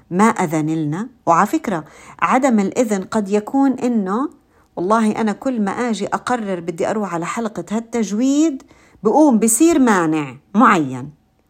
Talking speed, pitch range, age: 125 wpm, 195-275 Hz, 50-69